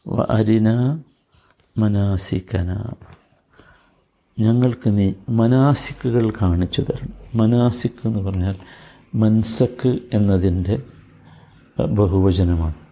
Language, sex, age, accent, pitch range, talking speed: Malayalam, male, 50-69, native, 95-120 Hz, 60 wpm